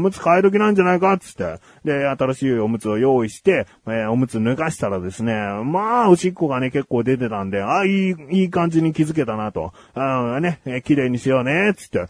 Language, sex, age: Japanese, male, 30-49